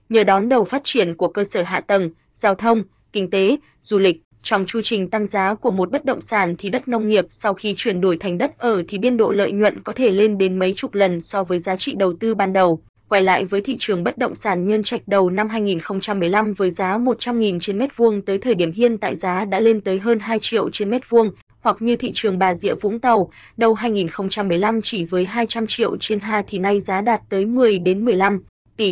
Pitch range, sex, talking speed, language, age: 190-225 Hz, female, 240 wpm, English, 20-39